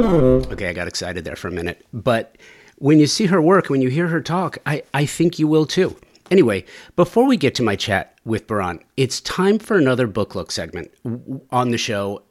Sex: male